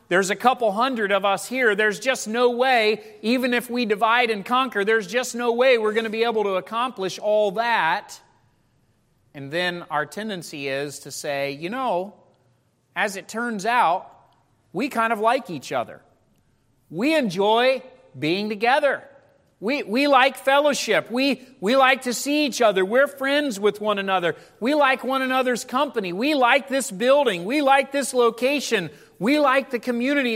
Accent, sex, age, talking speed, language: American, male, 40-59, 170 wpm, English